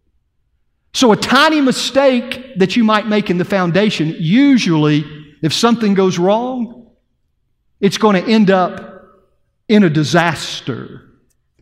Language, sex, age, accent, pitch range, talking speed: English, male, 50-69, American, 170-230 Hz, 125 wpm